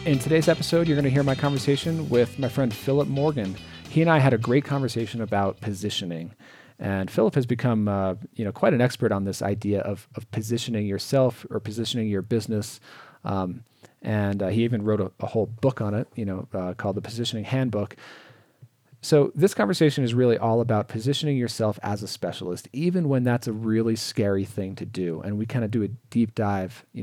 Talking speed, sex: 205 wpm, male